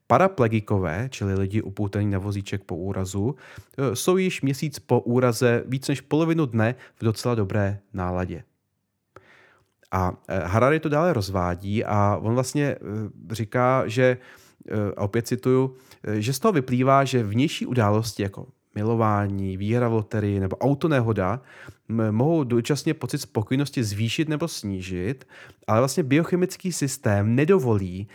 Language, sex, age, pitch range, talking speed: Czech, male, 30-49, 100-130 Hz, 130 wpm